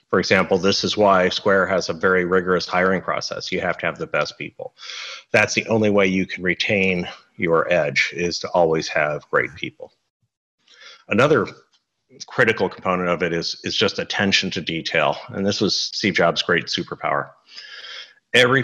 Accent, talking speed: American, 170 wpm